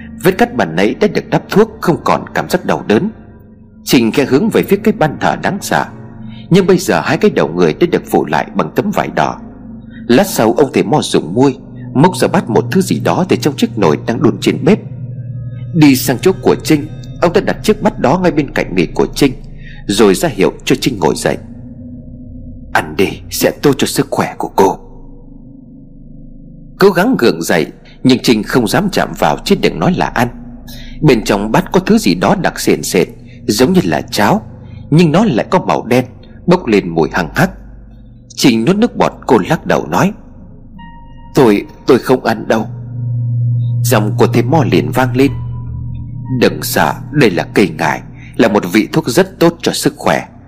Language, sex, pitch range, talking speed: Vietnamese, male, 120-155 Hz, 200 wpm